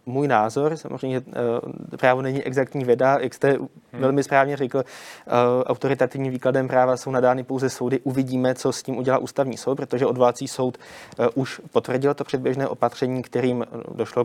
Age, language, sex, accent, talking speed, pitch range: 20-39, Czech, male, native, 150 wpm, 120-140 Hz